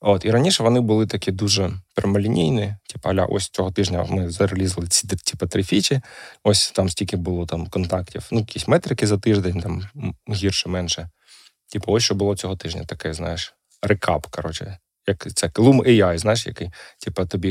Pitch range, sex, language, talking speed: 90-110 Hz, male, Ukrainian, 175 wpm